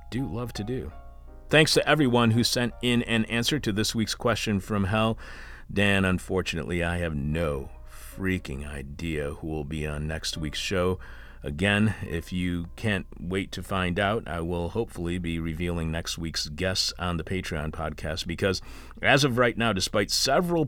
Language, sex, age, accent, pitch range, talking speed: English, male, 40-59, American, 80-115 Hz, 170 wpm